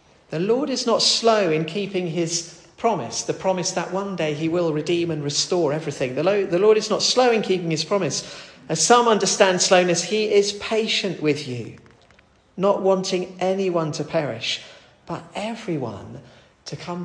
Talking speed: 175 wpm